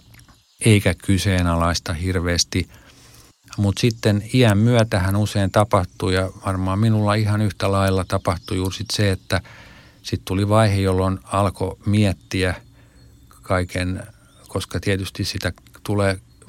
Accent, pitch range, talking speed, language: native, 95-105 Hz, 115 wpm, Finnish